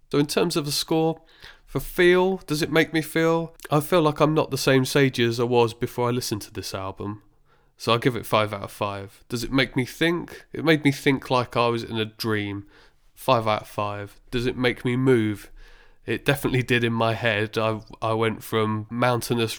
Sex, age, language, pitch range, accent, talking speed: male, 20-39, English, 110-135 Hz, British, 225 wpm